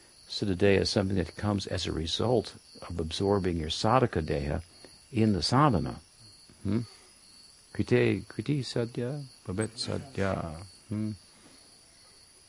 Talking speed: 110 wpm